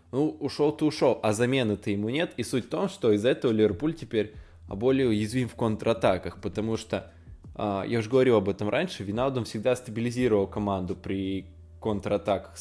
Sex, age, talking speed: male, 20-39, 160 wpm